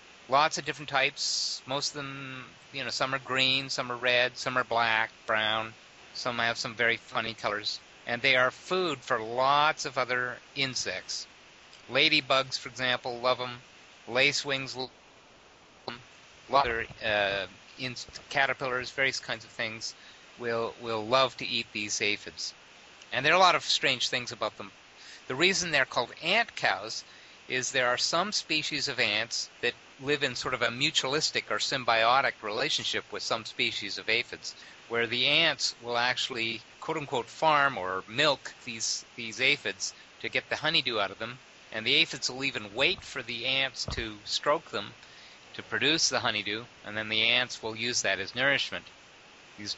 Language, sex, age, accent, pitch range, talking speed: English, male, 30-49, American, 115-135 Hz, 170 wpm